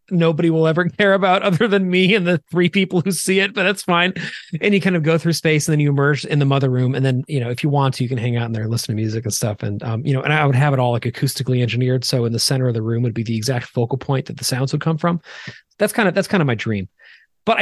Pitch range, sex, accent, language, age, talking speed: 125-165 Hz, male, American, English, 30-49, 320 wpm